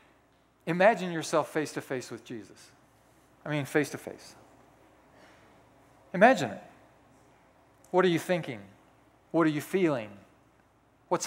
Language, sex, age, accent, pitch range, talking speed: English, male, 40-59, American, 135-195 Hz, 100 wpm